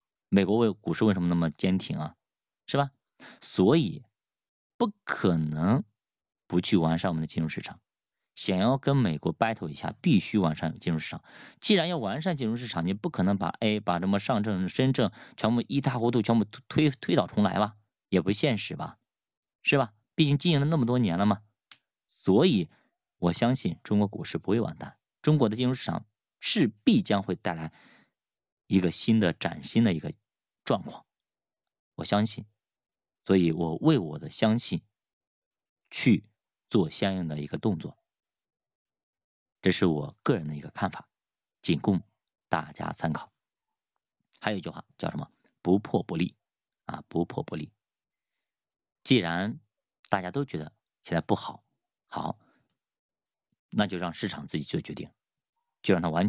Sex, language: male, Chinese